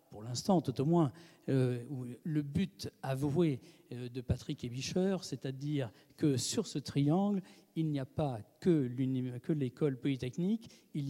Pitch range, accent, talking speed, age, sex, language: 130-170 Hz, French, 150 wpm, 50-69, male, French